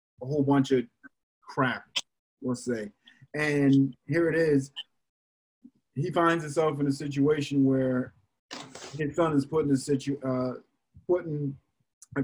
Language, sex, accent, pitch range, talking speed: English, male, American, 130-175 Hz, 135 wpm